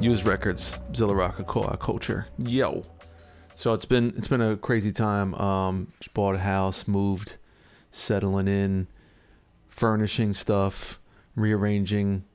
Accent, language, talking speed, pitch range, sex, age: American, English, 120 wpm, 95-110 Hz, male, 30-49